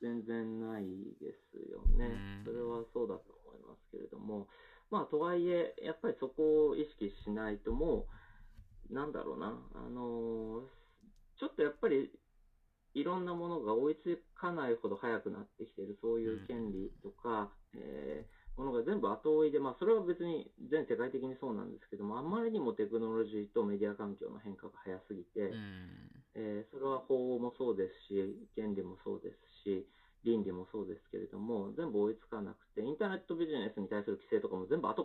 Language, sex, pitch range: Japanese, male, 105-160 Hz